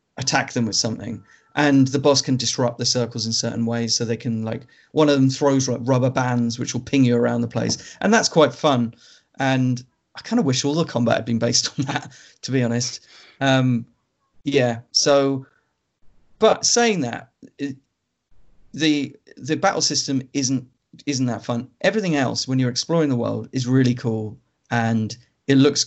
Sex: male